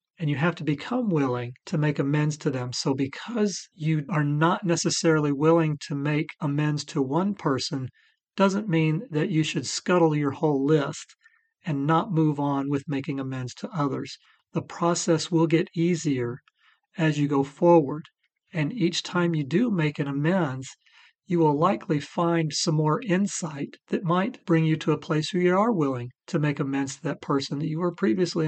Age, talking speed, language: 40-59, 185 wpm, English